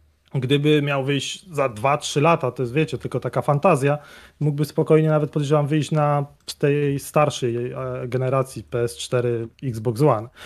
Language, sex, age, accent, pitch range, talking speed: Polish, male, 30-49, native, 135-165 Hz, 140 wpm